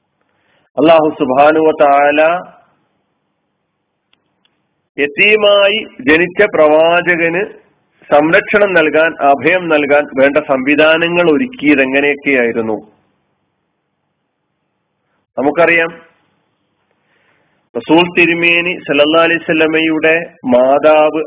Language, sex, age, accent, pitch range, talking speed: Malayalam, male, 40-59, native, 145-175 Hz, 50 wpm